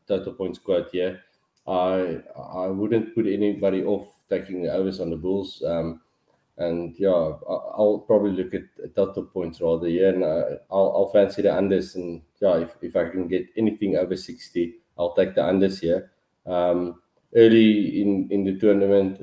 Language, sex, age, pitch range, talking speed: English, male, 20-39, 85-100 Hz, 180 wpm